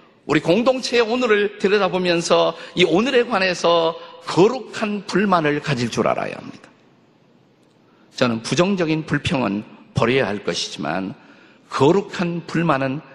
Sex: male